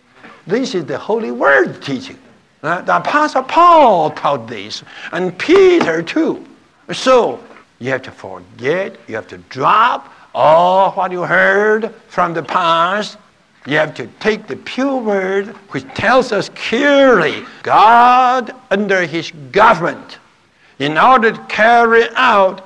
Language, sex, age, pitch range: English, male, 60-79, 175-245 Hz